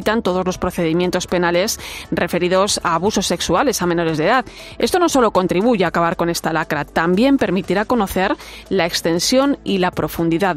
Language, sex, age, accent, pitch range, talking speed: Spanish, female, 30-49, Spanish, 180-235 Hz, 165 wpm